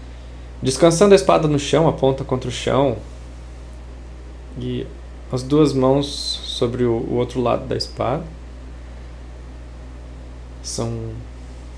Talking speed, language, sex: 105 wpm, Portuguese, male